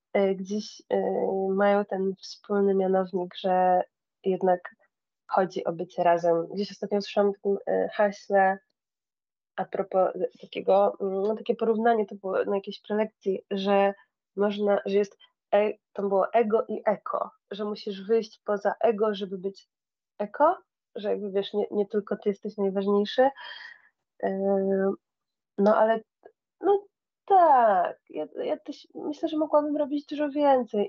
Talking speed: 130 wpm